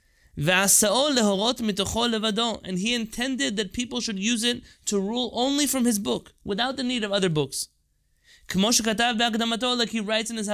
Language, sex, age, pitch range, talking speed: English, male, 20-39, 165-215 Hz, 130 wpm